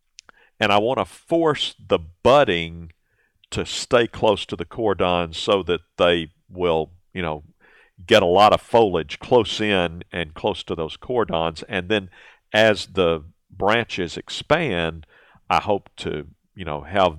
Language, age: English, 50-69